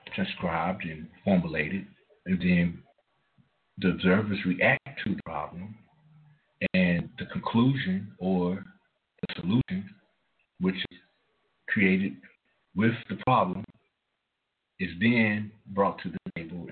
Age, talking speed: 60-79, 105 wpm